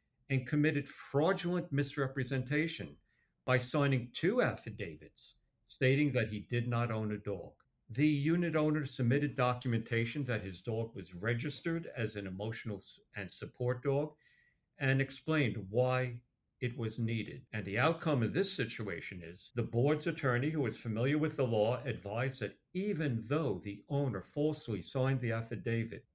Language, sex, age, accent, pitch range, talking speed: English, male, 60-79, American, 110-140 Hz, 145 wpm